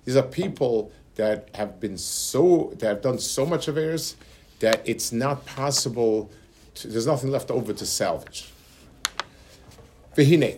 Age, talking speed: 50-69, 140 wpm